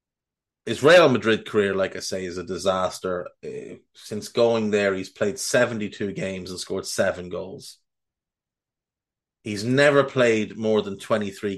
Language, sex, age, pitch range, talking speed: English, male, 30-49, 100-130 Hz, 145 wpm